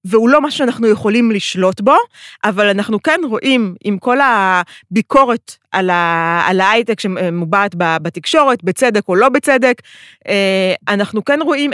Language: Hebrew